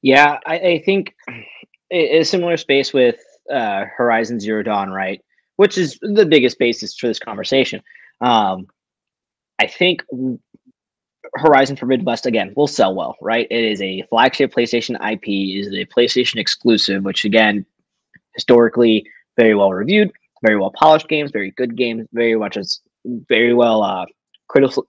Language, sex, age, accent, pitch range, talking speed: English, male, 20-39, American, 105-135 Hz, 150 wpm